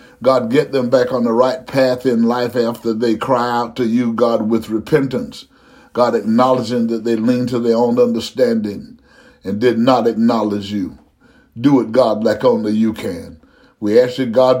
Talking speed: 180 wpm